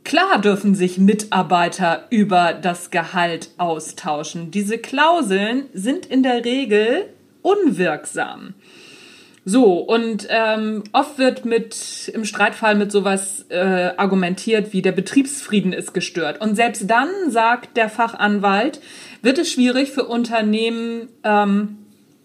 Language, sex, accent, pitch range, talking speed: German, female, German, 190-240 Hz, 120 wpm